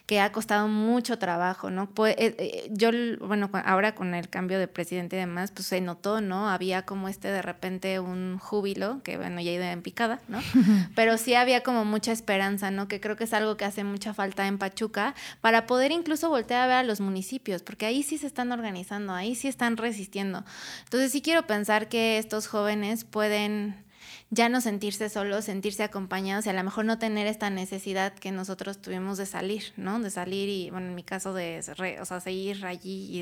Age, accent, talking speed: 20-39, Mexican, 205 wpm